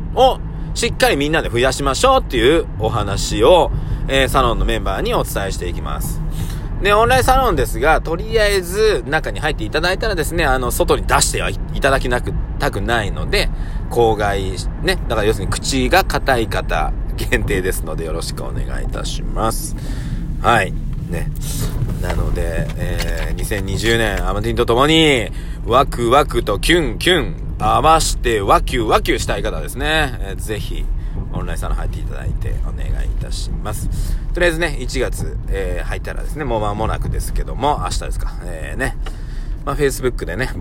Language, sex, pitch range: Japanese, male, 95-135 Hz